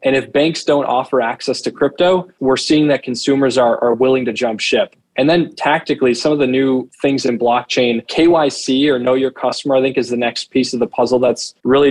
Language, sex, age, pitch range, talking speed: English, male, 20-39, 125-140 Hz, 220 wpm